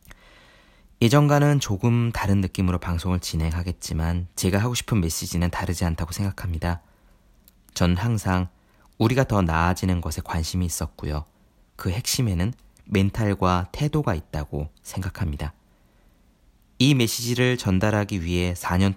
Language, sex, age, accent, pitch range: Korean, male, 20-39, native, 85-110 Hz